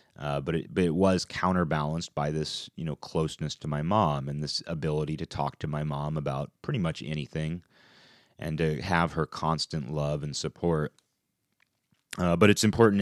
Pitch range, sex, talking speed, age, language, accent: 75-95 Hz, male, 180 wpm, 30-49, English, American